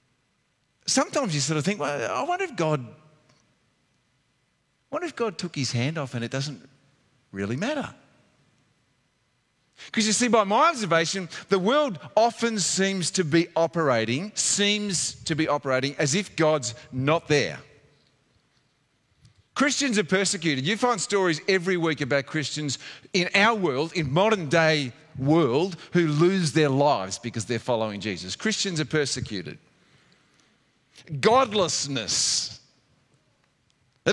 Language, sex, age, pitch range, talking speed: English, male, 40-59, 135-200 Hz, 130 wpm